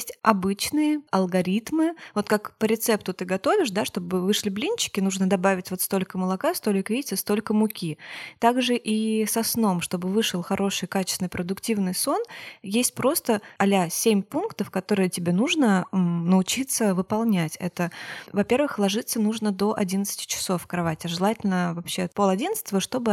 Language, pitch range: Russian, 185-225 Hz